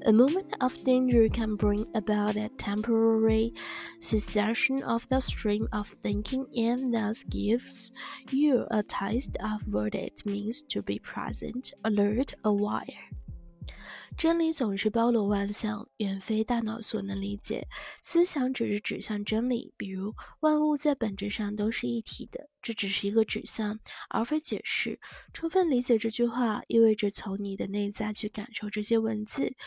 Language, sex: Chinese, female